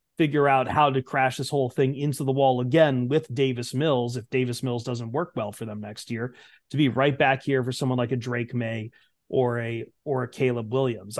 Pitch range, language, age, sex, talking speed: 130-155 Hz, English, 30-49, male, 225 wpm